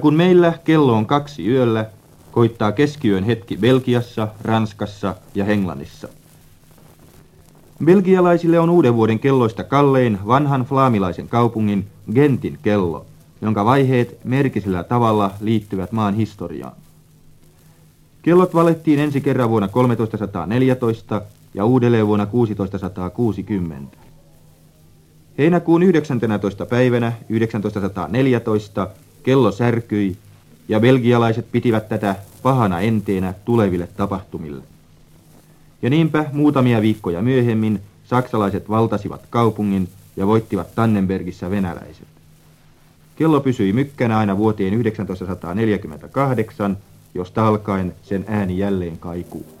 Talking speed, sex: 95 wpm, male